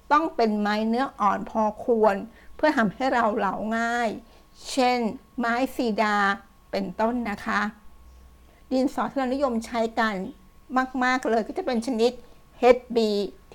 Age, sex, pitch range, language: 60-79, female, 210-255 Hz, Thai